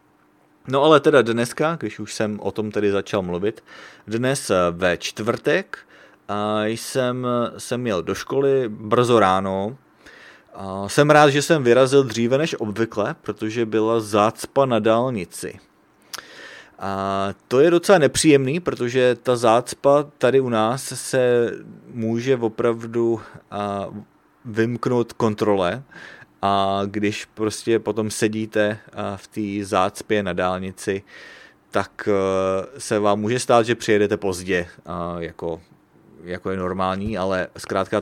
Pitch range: 95-120 Hz